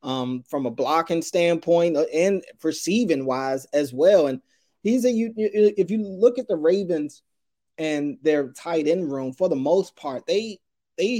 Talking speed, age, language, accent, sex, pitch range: 165 wpm, 20-39, English, American, male, 135-170 Hz